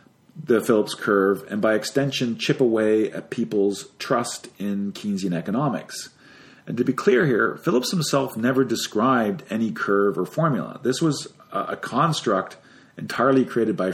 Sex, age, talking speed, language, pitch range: male, 40-59, 145 wpm, English, 105-140 Hz